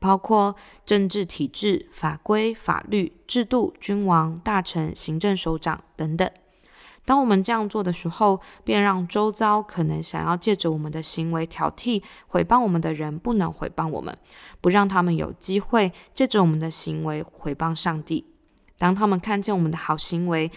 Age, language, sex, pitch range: 20-39, Chinese, female, 165-215 Hz